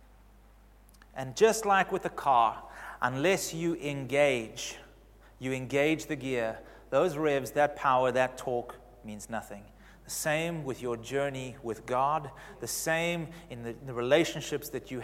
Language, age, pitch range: English, 30-49, 125-170 Hz